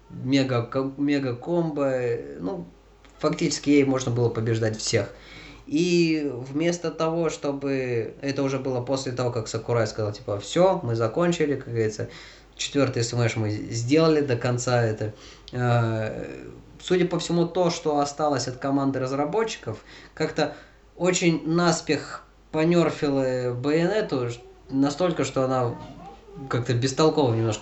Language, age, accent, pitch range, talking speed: Russian, 20-39, native, 115-145 Hz, 120 wpm